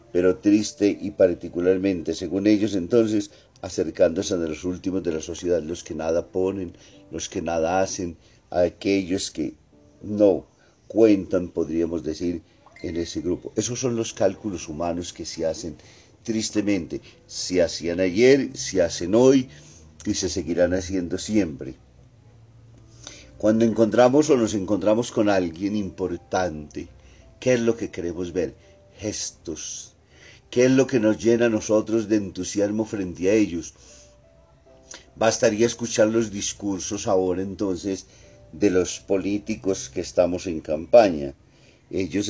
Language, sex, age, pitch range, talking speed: Spanish, male, 40-59, 90-110 Hz, 135 wpm